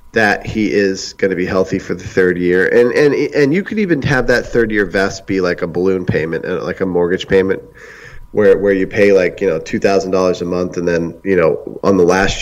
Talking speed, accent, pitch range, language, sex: 230 wpm, American, 95-120 Hz, English, male